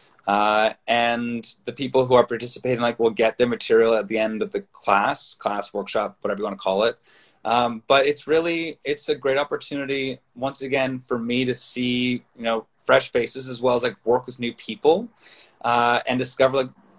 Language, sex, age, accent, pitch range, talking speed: English, male, 20-39, American, 110-135 Hz, 200 wpm